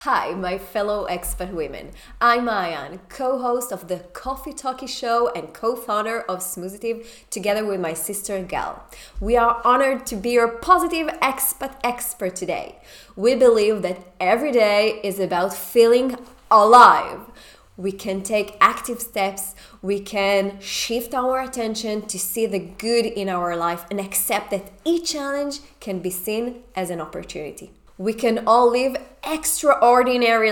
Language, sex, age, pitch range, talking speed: English, female, 20-39, 185-240 Hz, 145 wpm